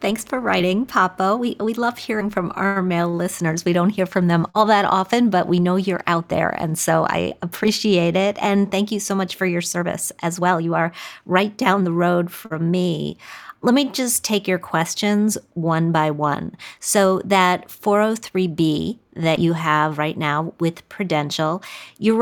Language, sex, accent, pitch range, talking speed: English, female, American, 165-205 Hz, 185 wpm